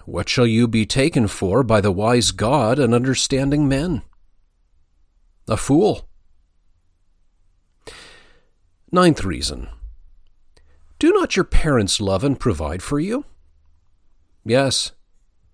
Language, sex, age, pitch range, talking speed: English, male, 40-59, 80-135 Hz, 105 wpm